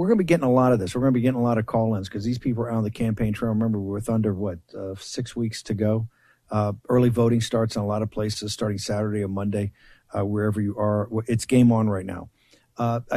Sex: male